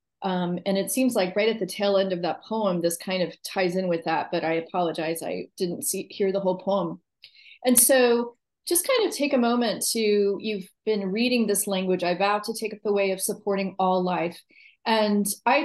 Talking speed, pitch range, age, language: 220 wpm, 185-225 Hz, 30-49, English